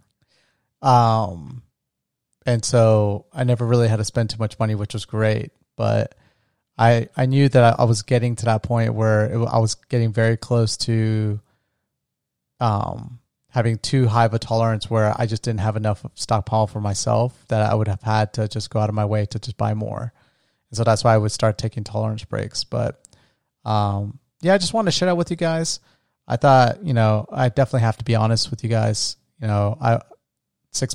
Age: 30-49